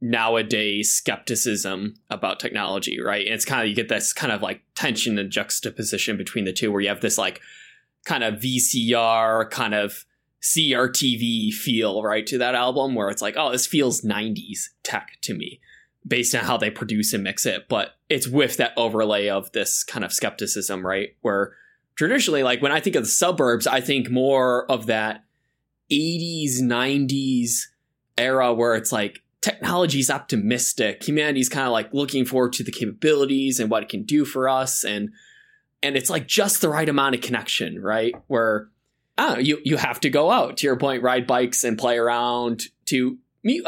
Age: 20-39